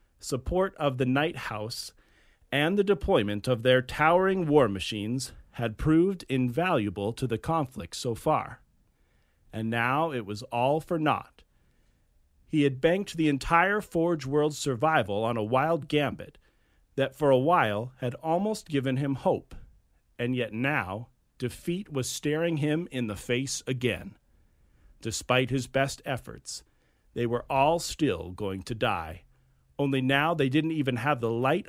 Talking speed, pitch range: 150 wpm, 105-150 Hz